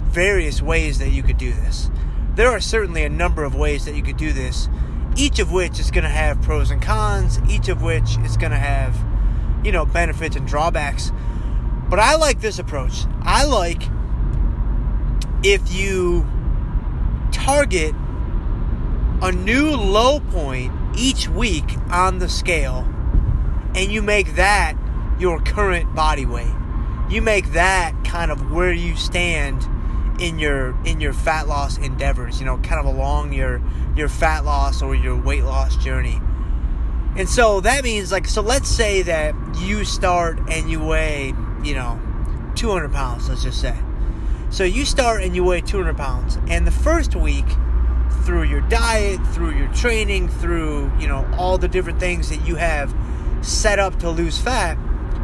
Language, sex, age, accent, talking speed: English, male, 30-49, American, 165 wpm